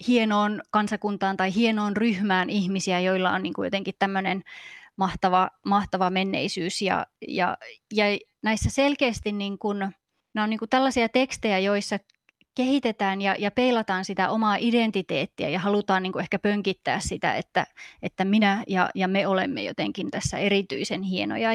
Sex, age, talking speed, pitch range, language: female, 20-39, 140 wpm, 195-245 Hz, Finnish